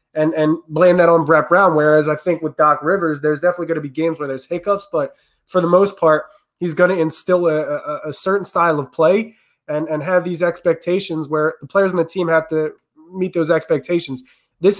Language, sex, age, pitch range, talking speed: English, male, 20-39, 150-175 Hz, 225 wpm